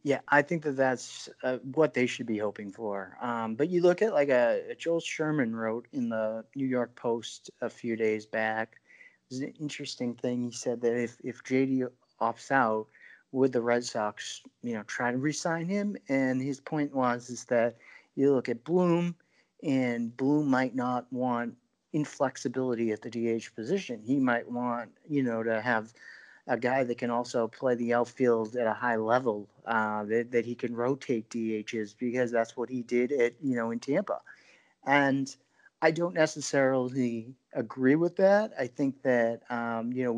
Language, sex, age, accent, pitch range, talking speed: English, male, 40-59, American, 115-135 Hz, 185 wpm